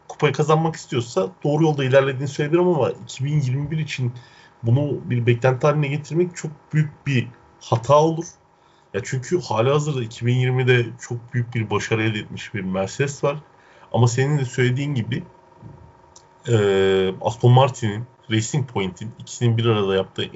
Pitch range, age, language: 115-150 Hz, 40-59, Turkish